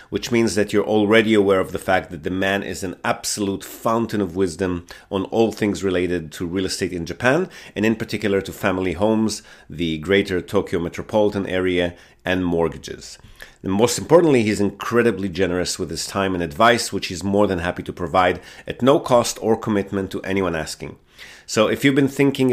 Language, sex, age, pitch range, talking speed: English, male, 30-49, 100-120 Hz, 190 wpm